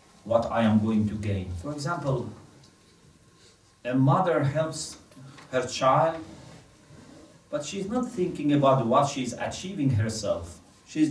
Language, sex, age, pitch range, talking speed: English, male, 40-59, 115-150 Hz, 125 wpm